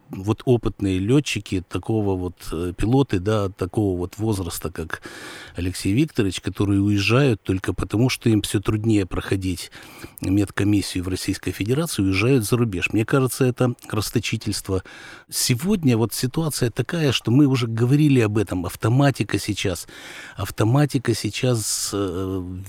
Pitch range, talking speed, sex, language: 100-130 Hz, 125 wpm, male, Russian